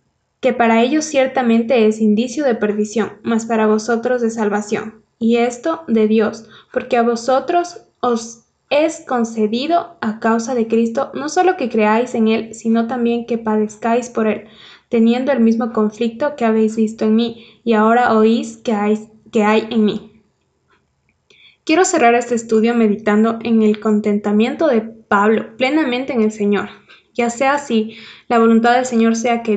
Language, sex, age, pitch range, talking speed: Spanish, female, 10-29, 220-240 Hz, 160 wpm